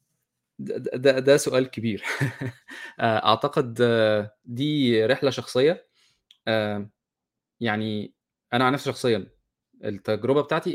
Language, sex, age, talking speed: Arabic, male, 20-39, 85 wpm